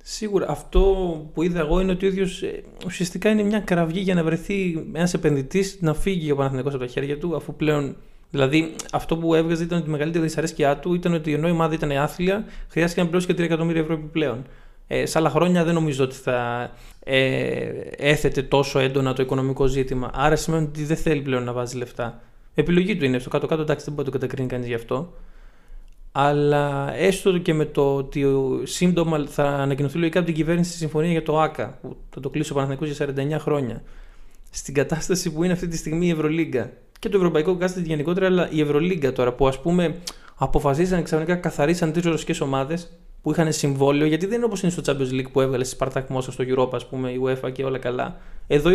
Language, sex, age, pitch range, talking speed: Greek, male, 20-39, 135-170 Hz, 205 wpm